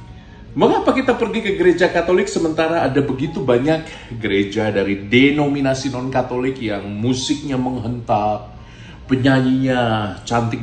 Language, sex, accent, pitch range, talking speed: Indonesian, male, native, 105-130 Hz, 105 wpm